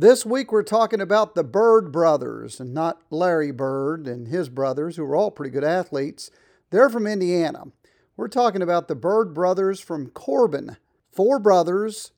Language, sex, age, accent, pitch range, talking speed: English, male, 50-69, American, 150-210 Hz, 170 wpm